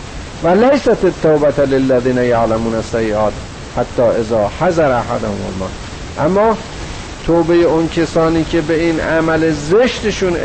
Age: 50-69